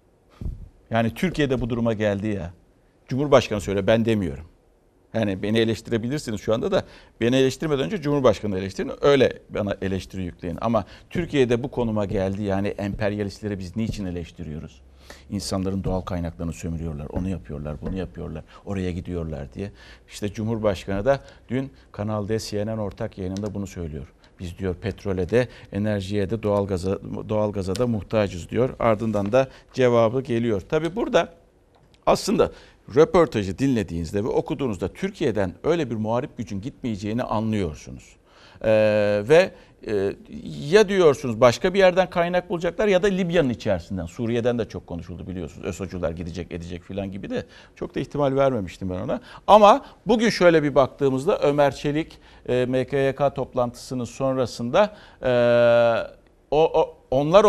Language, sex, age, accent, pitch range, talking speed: Turkish, male, 60-79, native, 95-135 Hz, 140 wpm